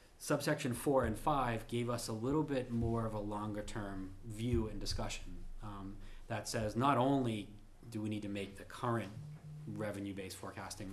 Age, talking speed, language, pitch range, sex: 20-39, 165 wpm, English, 100-120 Hz, male